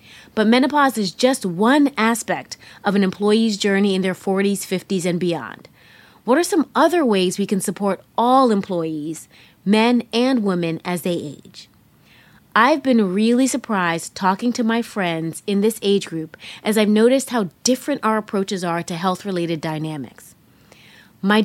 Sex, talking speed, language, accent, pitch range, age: female, 155 wpm, English, American, 190-245 Hz, 30-49